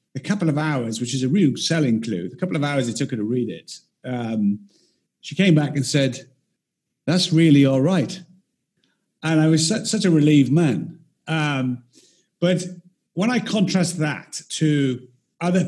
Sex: male